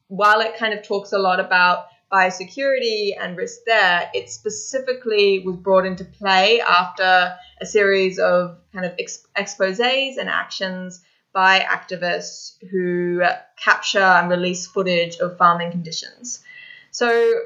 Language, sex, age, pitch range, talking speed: English, female, 20-39, 180-230 Hz, 130 wpm